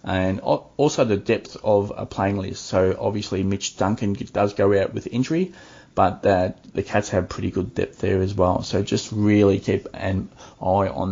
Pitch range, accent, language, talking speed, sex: 95-110 Hz, Australian, English, 190 wpm, male